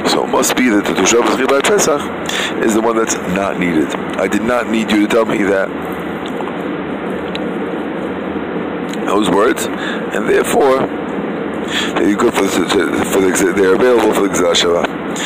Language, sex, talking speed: English, male, 150 wpm